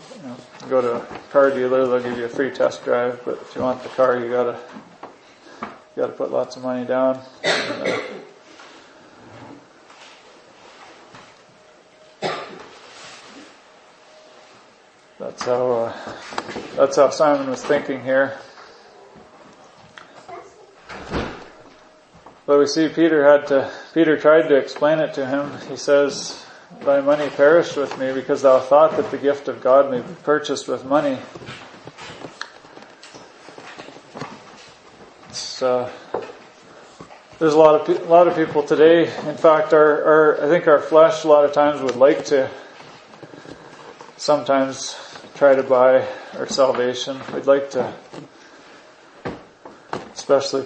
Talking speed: 120 wpm